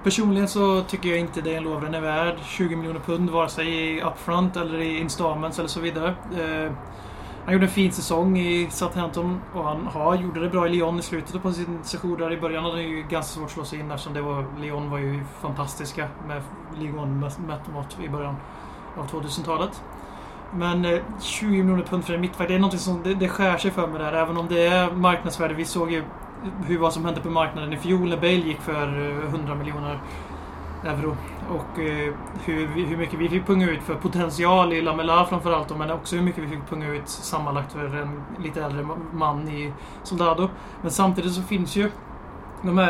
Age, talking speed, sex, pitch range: 20-39, 205 wpm, male, 155-175 Hz